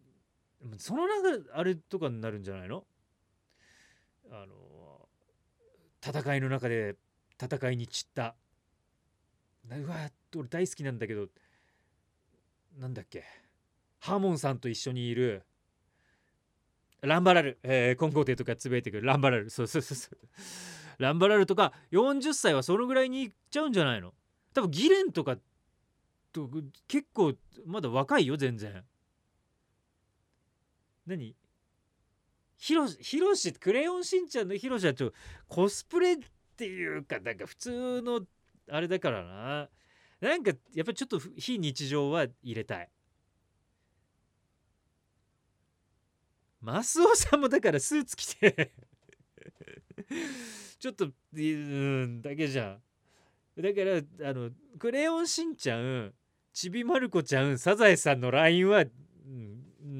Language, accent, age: Japanese, native, 30-49